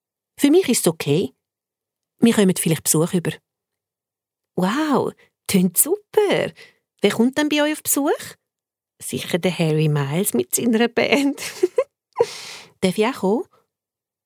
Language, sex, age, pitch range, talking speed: German, female, 40-59, 160-240 Hz, 125 wpm